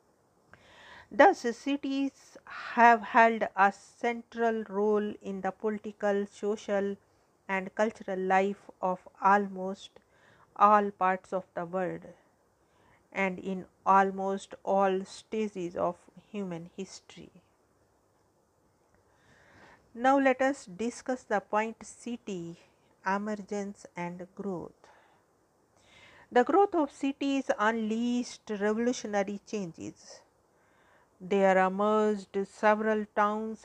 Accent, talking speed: Indian, 90 wpm